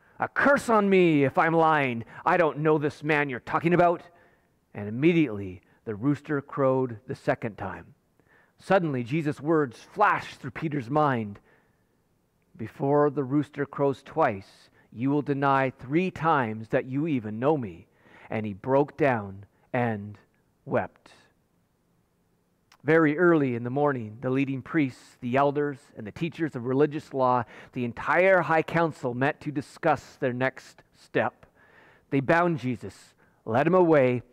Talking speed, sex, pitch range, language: 145 wpm, male, 125-165 Hz, English